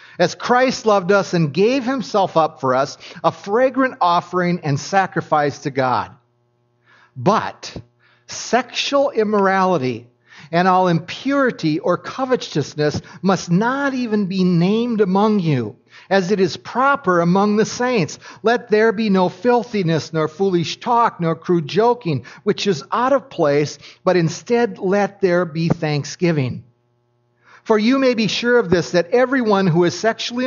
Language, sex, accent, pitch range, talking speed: English, male, American, 160-220 Hz, 145 wpm